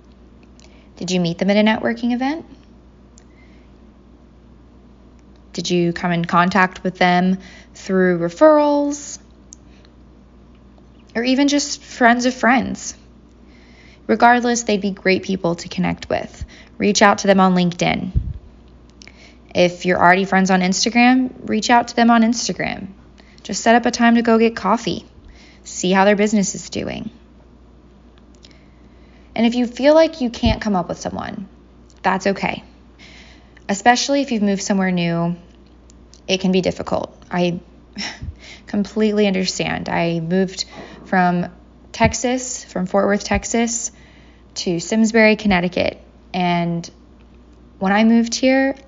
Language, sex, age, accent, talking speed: English, female, 20-39, American, 130 wpm